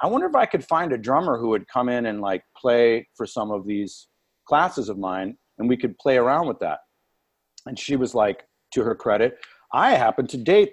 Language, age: English, 40-59